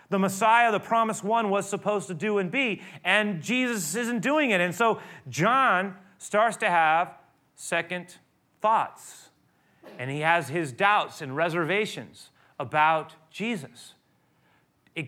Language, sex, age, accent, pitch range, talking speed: English, male, 40-59, American, 150-205 Hz, 135 wpm